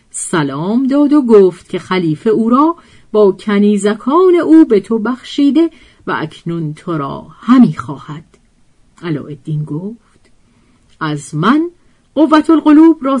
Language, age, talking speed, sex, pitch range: Persian, 50-69, 120 wpm, female, 160-270 Hz